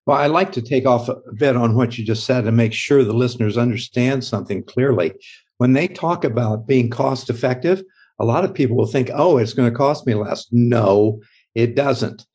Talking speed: 210 wpm